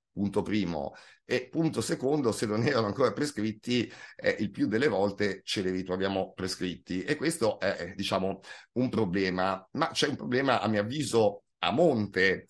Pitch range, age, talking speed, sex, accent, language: 95-130 Hz, 50-69, 165 wpm, male, native, Italian